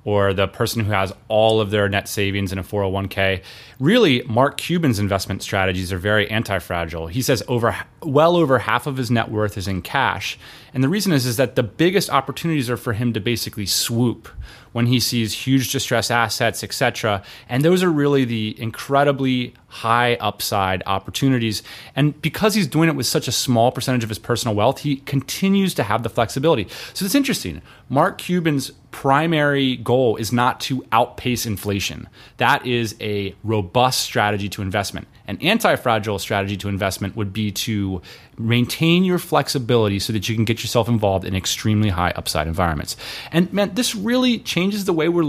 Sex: male